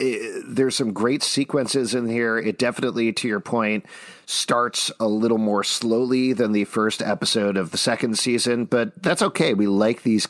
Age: 40-59